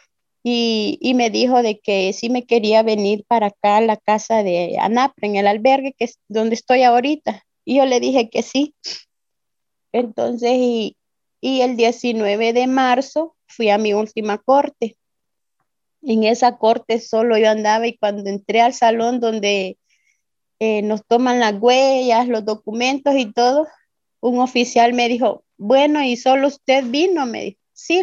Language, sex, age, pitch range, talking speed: Spanish, female, 30-49, 215-250 Hz, 165 wpm